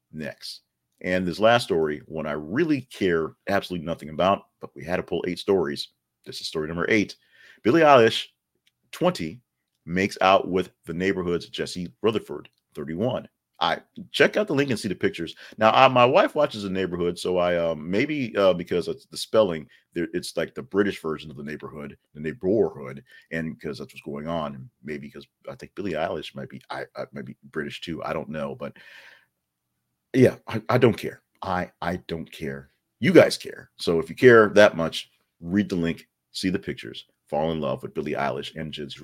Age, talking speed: 40-59, 195 wpm